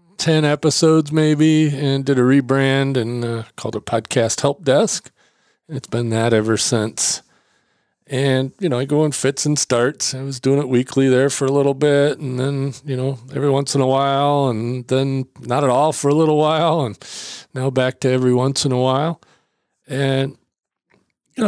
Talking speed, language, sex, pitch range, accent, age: 185 wpm, English, male, 125-150 Hz, American, 40-59